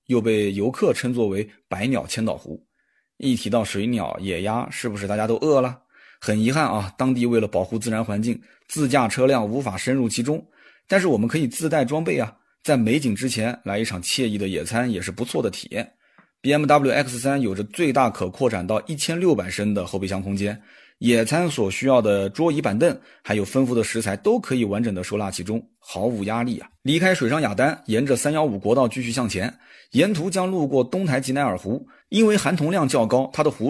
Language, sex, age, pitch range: Chinese, male, 20-39, 105-145 Hz